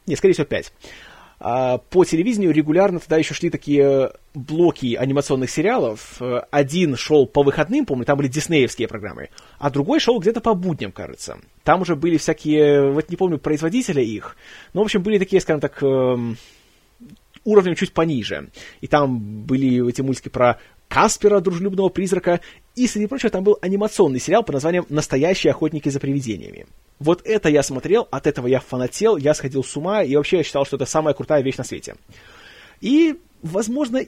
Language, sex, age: Russian, male, 20-39